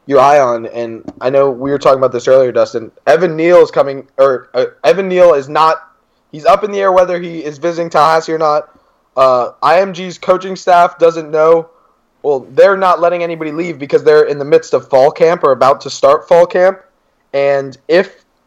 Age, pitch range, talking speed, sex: 20-39, 135-170 Hz, 205 wpm, male